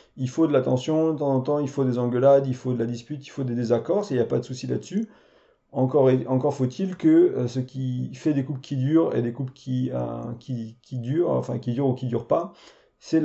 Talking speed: 250 wpm